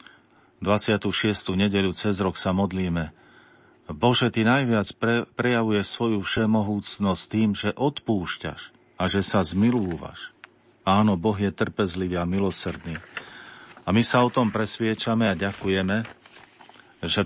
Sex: male